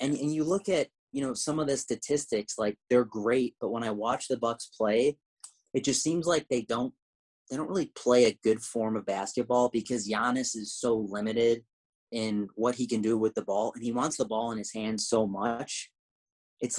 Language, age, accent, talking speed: English, 30-49, American, 215 wpm